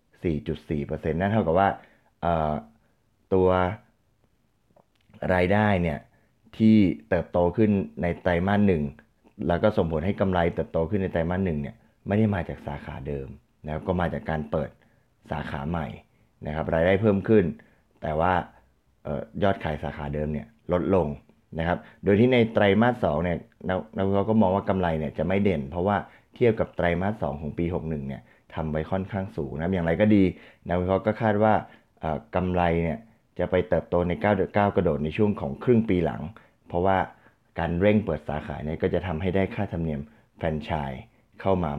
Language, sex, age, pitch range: Thai, male, 30-49, 80-100 Hz